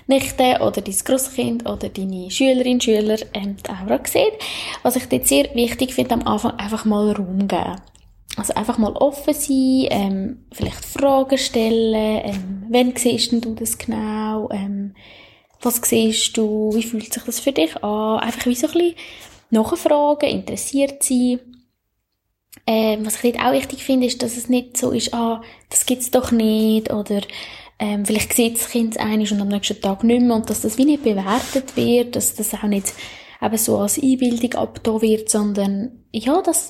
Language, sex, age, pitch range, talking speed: German, female, 10-29, 210-265 Hz, 180 wpm